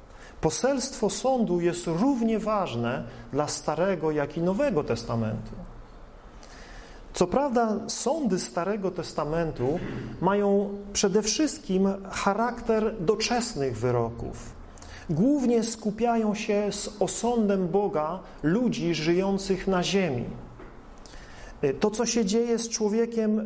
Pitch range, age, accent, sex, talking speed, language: 150-220 Hz, 40-59, native, male, 95 wpm, Polish